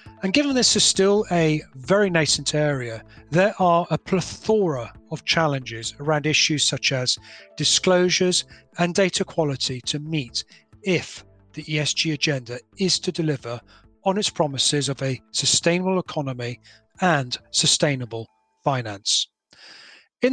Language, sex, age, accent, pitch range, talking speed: English, male, 40-59, British, 140-180 Hz, 125 wpm